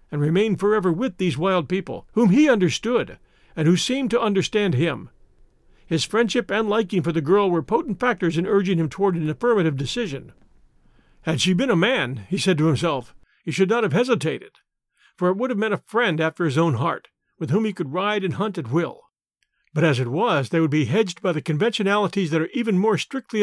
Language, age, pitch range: English, 50-69, 160-210 Hz